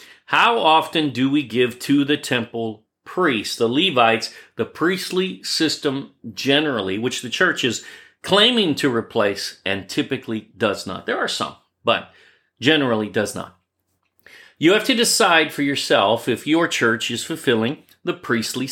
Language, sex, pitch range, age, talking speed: English, male, 115-155 Hz, 40-59, 145 wpm